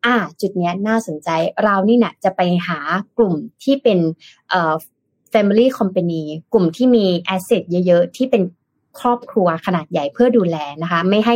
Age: 20-39